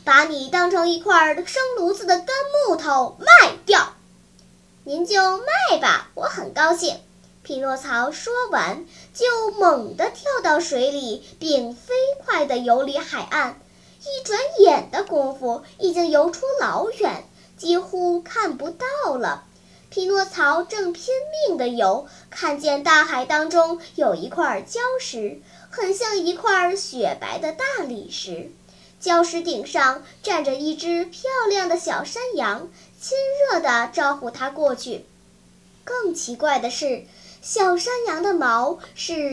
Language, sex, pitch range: Chinese, male, 285-390 Hz